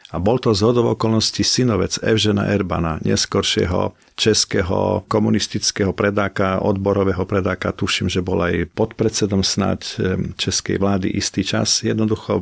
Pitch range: 90-105 Hz